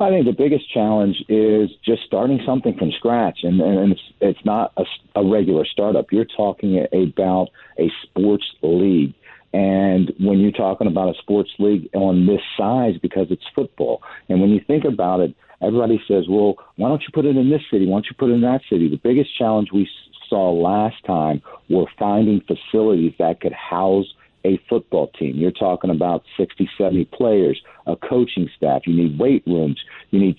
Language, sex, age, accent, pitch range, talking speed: English, male, 50-69, American, 90-115 Hz, 190 wpm